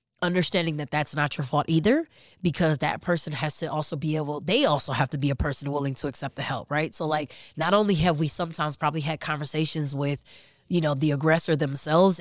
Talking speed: 215 wpm